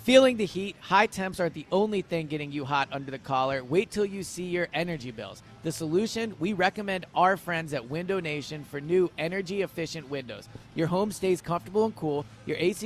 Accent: American